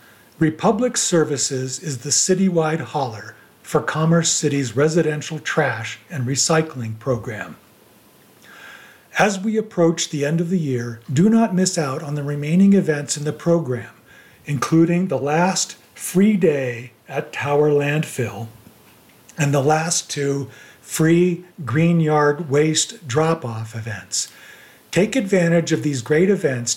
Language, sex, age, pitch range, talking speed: English, male, 50-69, 135-170 Hz, 130 wpm